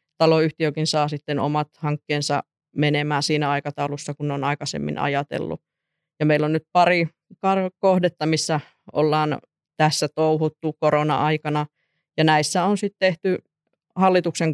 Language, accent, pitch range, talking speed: Finnish, native, 150-165 Hz, 120 wpm